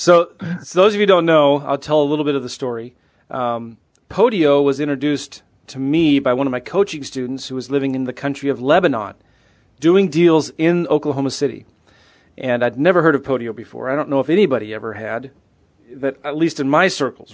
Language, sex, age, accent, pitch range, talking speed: English, male, 30-49, American, 125-160 Hz, 210 wpm